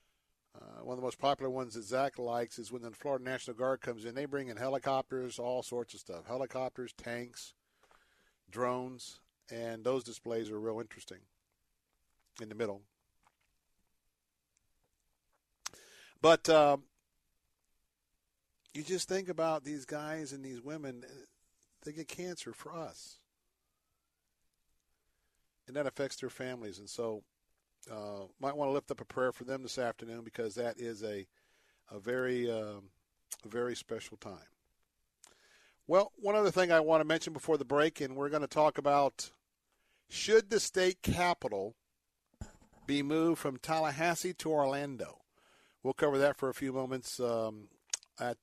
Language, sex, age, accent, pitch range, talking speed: English, male, 50-69, American, 110-140 Hz, 150 wpm